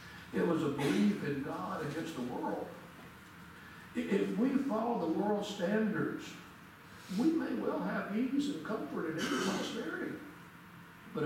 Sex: male